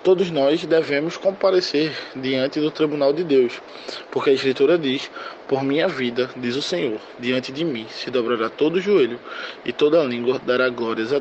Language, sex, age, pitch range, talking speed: Portuguese, male, 20-39, 130-180 Hz, 180 wpm